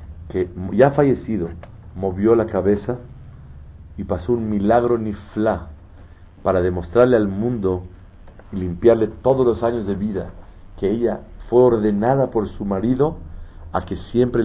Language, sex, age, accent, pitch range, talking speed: Spanish, male, 50-69, Mexican, 85-115 Hz, 135 wpm